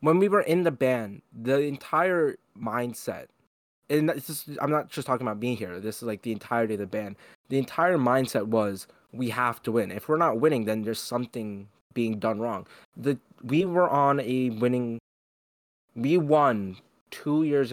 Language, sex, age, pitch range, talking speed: English, male, 20-39, 105-130 Hz, 185 wpm